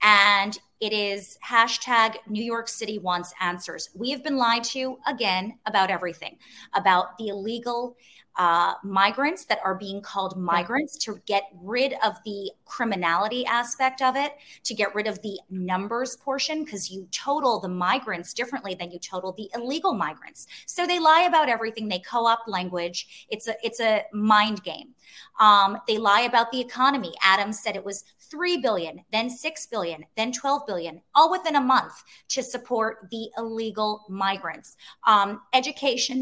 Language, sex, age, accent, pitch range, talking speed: English, female, 30-49, American, 200-255 Hz, 160 wpm